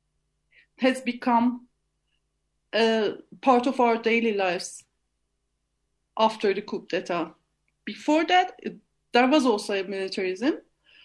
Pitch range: 220-265 Hz